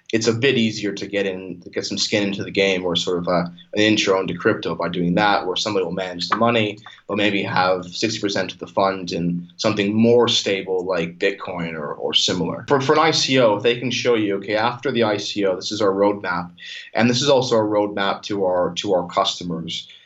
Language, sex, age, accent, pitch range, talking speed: English, male, 20-39, American, 90-110 Hz, 225 wpm